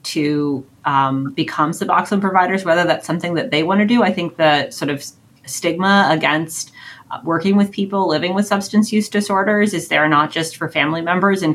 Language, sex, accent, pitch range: English, female, American, 135-175 Hz